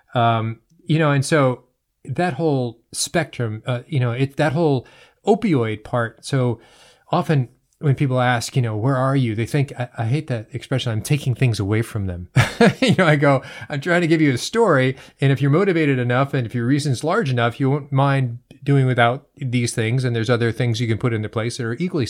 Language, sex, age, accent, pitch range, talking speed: English, male, 40-59, American, 115-140 Hz, 215 wpm